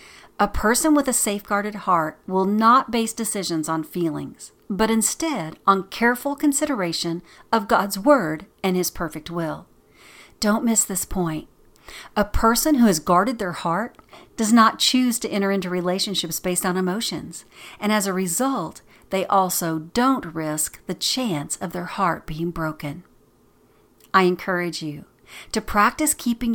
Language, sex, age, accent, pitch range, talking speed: English, female, 50-69, American, 165-220 Hz, 150 wpm